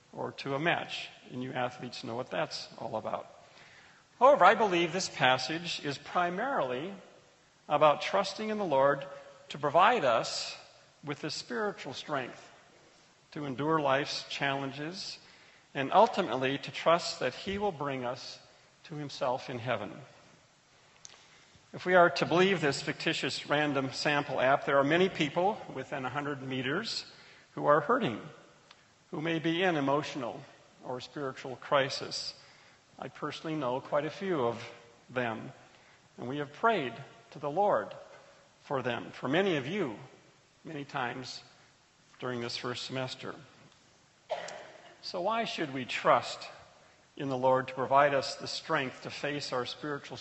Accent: American